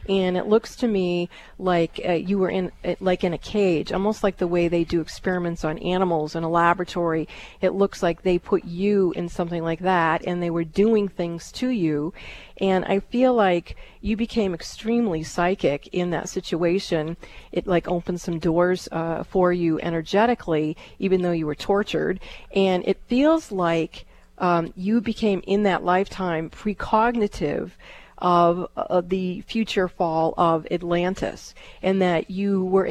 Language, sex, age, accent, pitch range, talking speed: English, female, 40-59, American, 170-200 Hz, 165 wpm